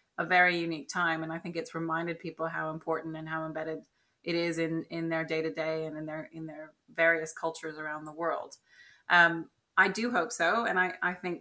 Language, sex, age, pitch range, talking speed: English, female, 30-49, 160-175 Hz, 210 wpm